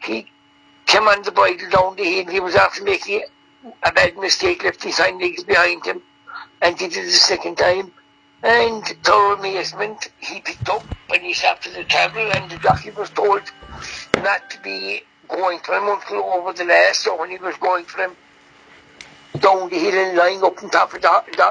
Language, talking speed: English, 200 wpm